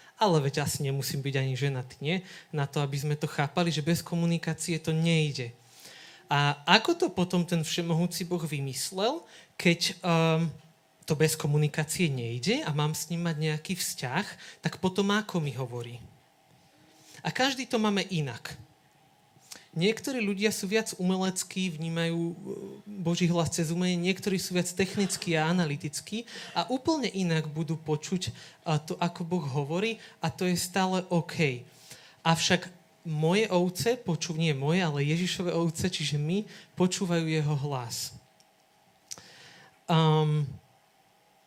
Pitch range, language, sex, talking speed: 155-185 Hz, Slovak, male, 135 wpm